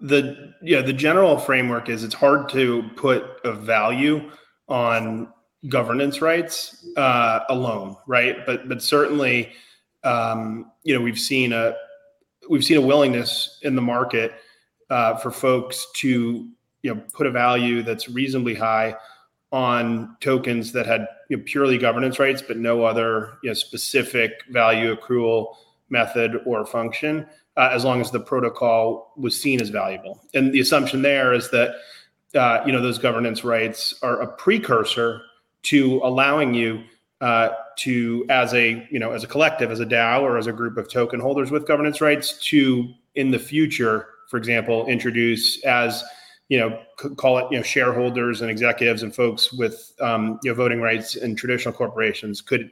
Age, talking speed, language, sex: 30-49, 170 wpm, English, male